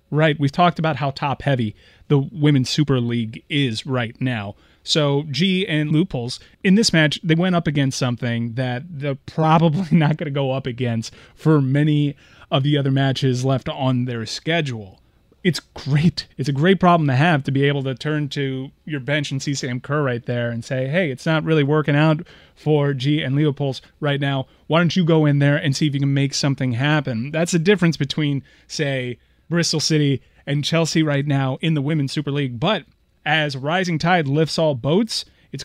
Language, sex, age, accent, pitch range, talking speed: English, male, 30-49, American, 135-165 Hz, 200 wpm